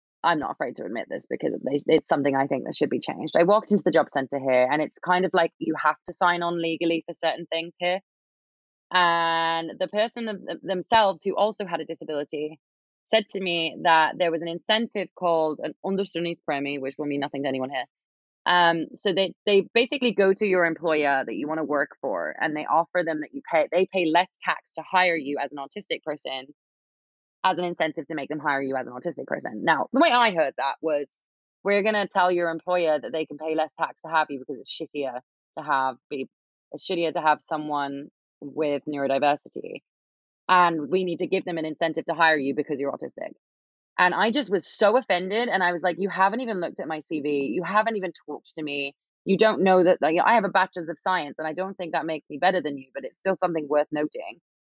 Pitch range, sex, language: 145-185 Hz, female, English